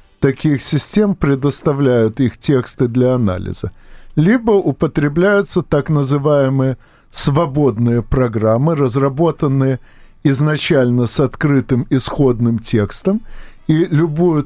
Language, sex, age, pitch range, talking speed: Russian, male, 50-69, 125-160 Hz, 85 wpm